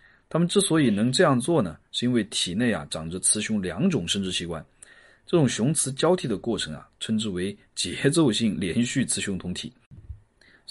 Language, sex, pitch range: Chinese, male, 90-130 Hz